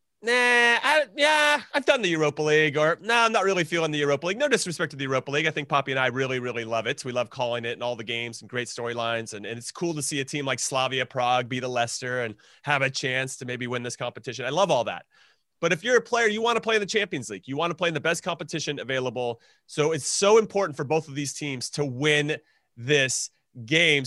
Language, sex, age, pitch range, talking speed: English, male, 30-49, 135-190 Hz, 265 wpm